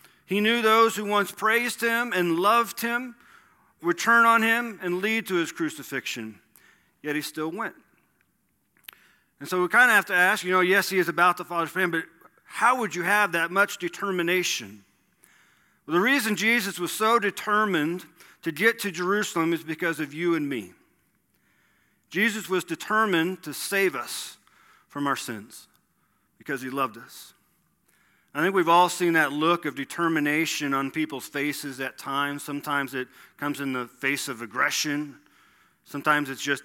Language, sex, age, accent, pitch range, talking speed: English, male, 40-59, American, 135-190 Hz, 170 wpm